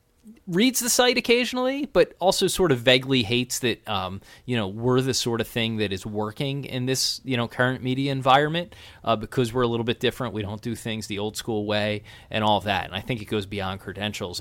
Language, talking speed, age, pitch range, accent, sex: English, 225 wpm, 30-49, 100-120 Hz, American, male